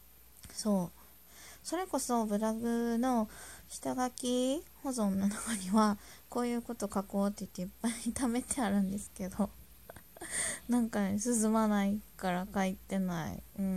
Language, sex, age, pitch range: Japanese, female, 20-39, 180-230 Hz